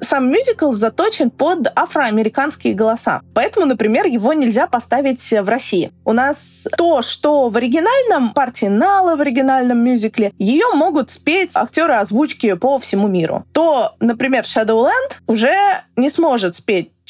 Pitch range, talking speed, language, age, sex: 205-275 Hz, 135 wpm, Russian, 20-39, female